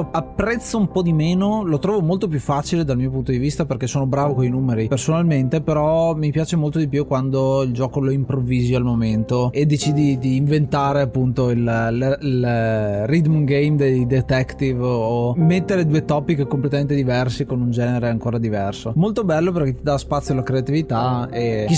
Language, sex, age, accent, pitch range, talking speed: Italian, male, 20-39, native, 130-165 Hz, 185 wpm